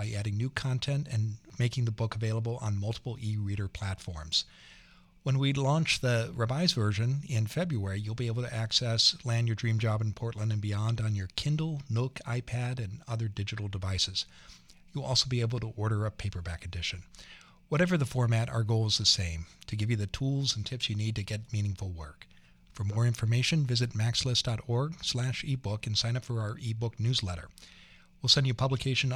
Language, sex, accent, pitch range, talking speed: English, male, American, 105-130 Hz, 185 wpm